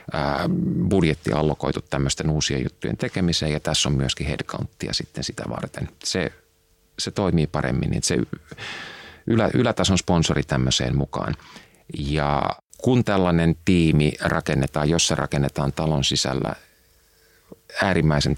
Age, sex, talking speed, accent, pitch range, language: 30-49, male, 110 wpm, Finnish, 70-85 Hz, English